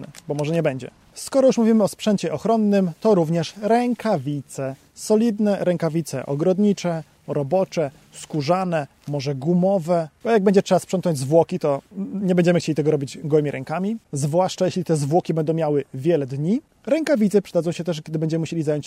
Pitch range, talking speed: 155-195 Hz, 160 wpm